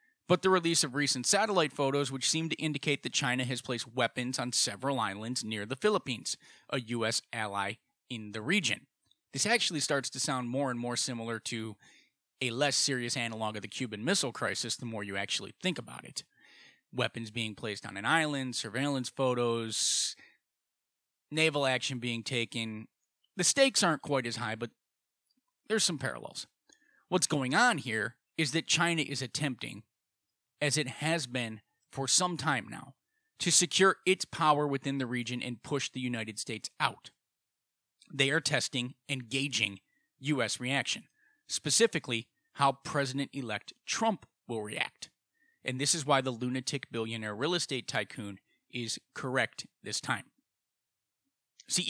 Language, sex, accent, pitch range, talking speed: English, male, American, 115-160 Hz, 155 wpm